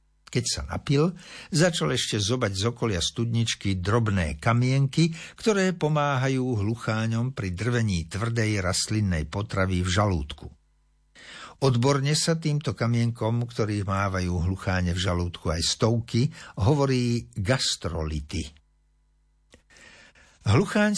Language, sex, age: Slovak, male, 60-79